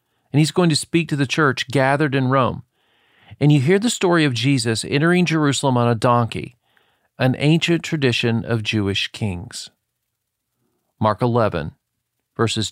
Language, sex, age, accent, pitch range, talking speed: English, male, 40-59, American, 115-155 Hz, 150 wpm